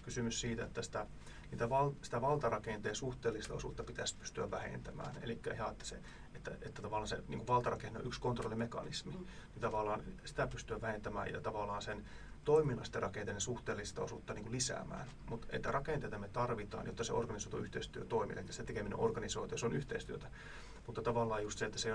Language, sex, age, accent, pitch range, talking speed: Finnish, male, 30-49, native, 105-120 Hz, 170 wpm